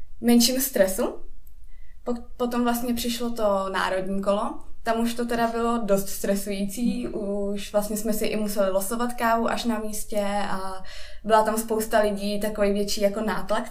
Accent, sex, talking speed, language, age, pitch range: native, female, 155 wpm, Czech, 20-39, 200-235 Hz